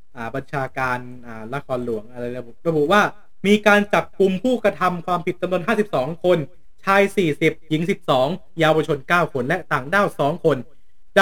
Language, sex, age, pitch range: Thai, male, 20-39, 150-205 Hz